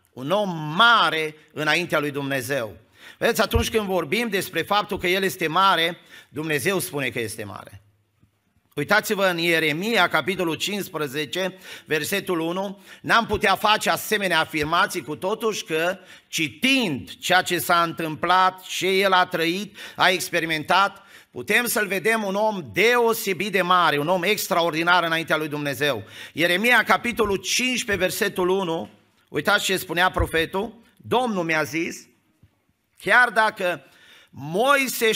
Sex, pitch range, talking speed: male, 160-210 Hz, 130 wpm